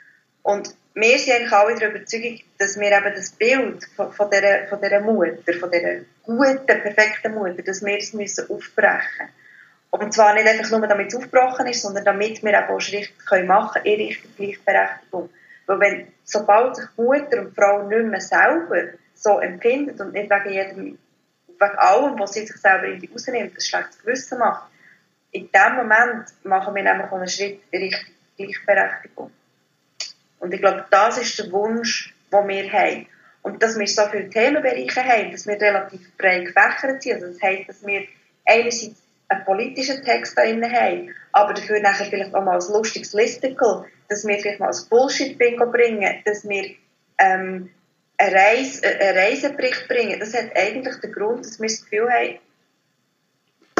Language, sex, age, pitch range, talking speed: German, female, 20-39, 195-240 Hz, 175 wpm